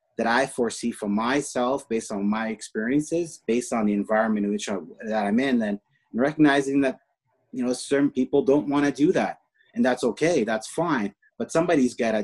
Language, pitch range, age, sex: English, 110-140 Hz, 30-49, male